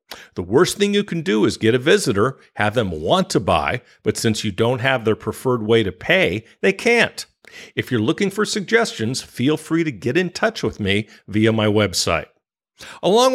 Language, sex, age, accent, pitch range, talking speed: English, male, 50-69, American, 115-175 Hz, 200 wpm